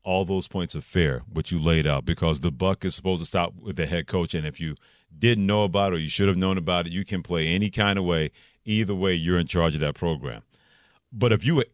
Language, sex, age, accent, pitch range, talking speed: English, male, 40-59, American, 95-125 Hz, 270 wpm